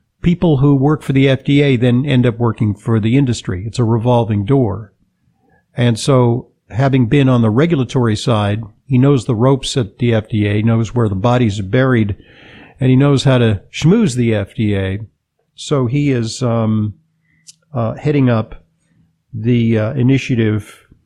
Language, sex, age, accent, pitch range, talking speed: English, male, 50-69, American, 115-145 Hz, 160 wpm